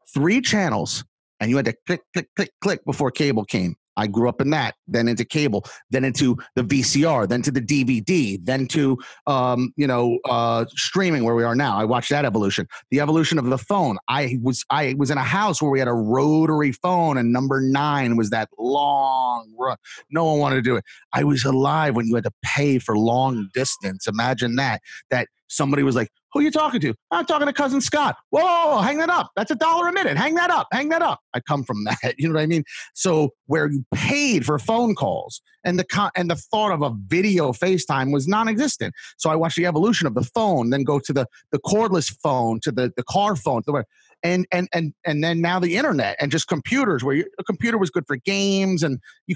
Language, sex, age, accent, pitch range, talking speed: English, male, 30-49, American, 125-180 Hz, 230 wpm